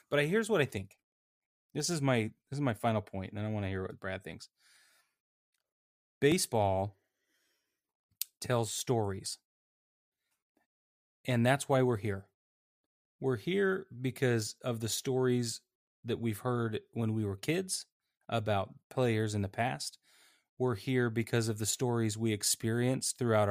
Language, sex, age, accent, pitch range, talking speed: English, male, 30-49, American, 105-130 Hz, 145 wpm